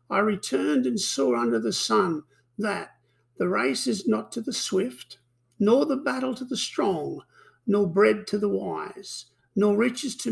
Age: 60-79